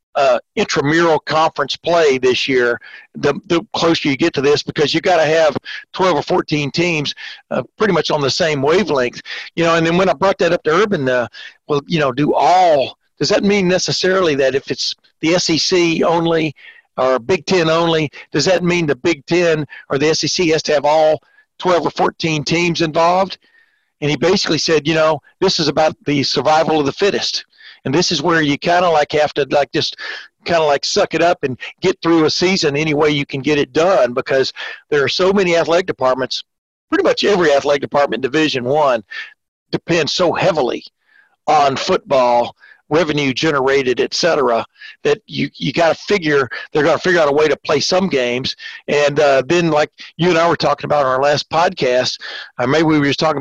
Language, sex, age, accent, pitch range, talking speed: English, male, 60-79, American, 145-180 Hz, 205 wpm